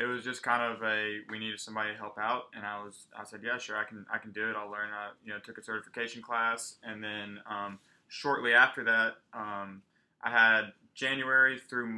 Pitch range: 105-120 Hz